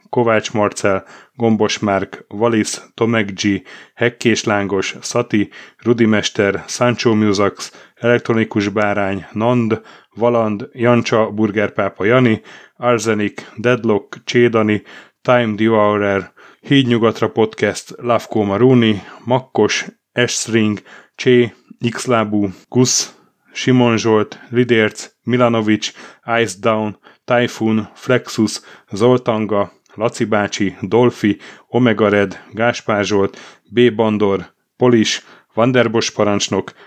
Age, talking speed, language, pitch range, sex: 30-49, 90 wpm, Hungarian, 105-120 Hz, male